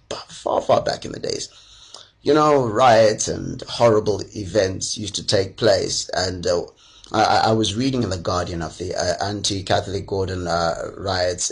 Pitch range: 100-120 Hz